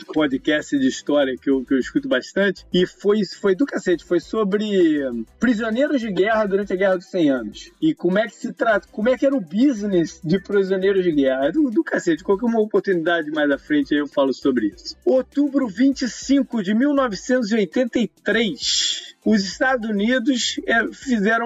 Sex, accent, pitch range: male, Brazilian, 185-260 Hz